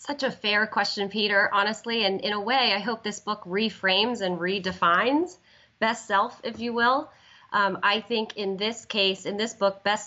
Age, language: 30-49, English